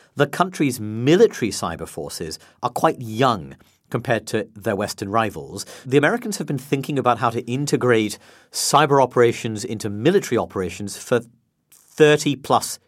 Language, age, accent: English, 40-59, British